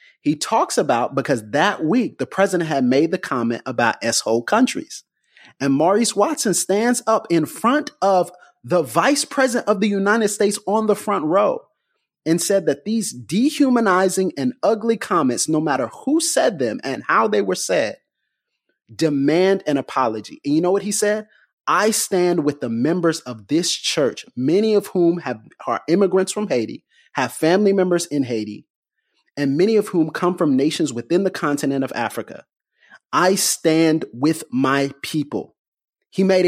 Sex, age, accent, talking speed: male, 30-49, American, 165 wpm